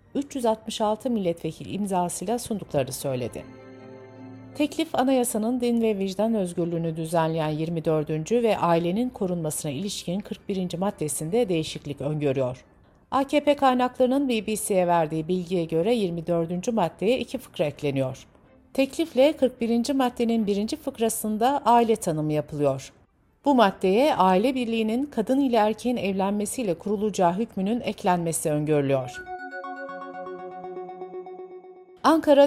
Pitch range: 160-240 Hz